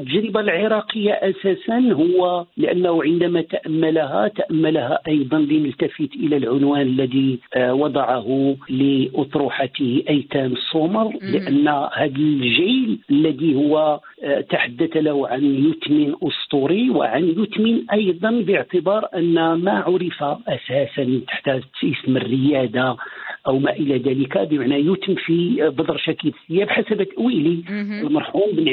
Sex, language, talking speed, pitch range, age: male, Arabic, 105 wpm, 145-210 Hz, 50-69